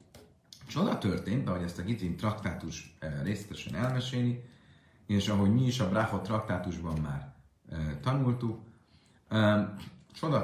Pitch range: 90-120 Hz